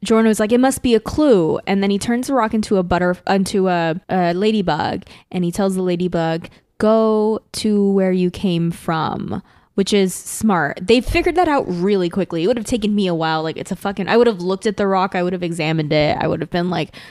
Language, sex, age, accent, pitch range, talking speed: English, female, 20-39, American, 175-210 Hz, 240 wpm